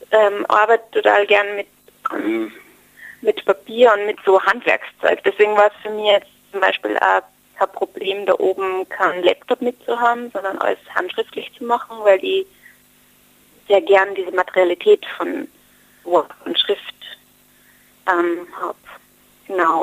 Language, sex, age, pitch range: German, female, 30-49, 190-265 Hz